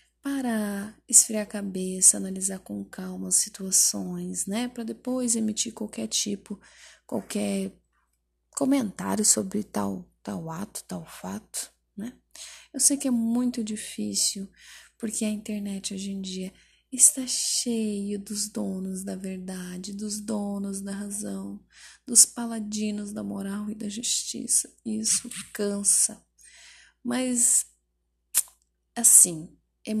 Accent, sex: Brazilian, female